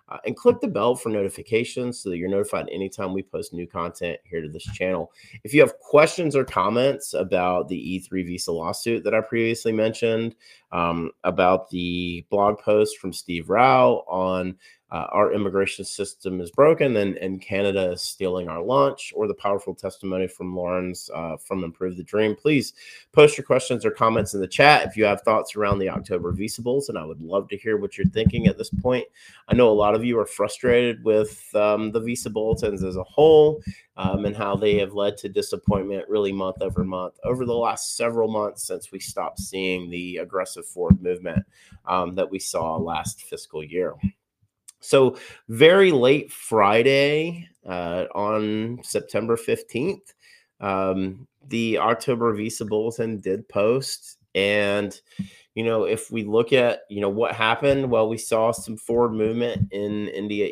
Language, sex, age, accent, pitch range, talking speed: English, male, 30-49, American, 95-120 Hz, 175 wpm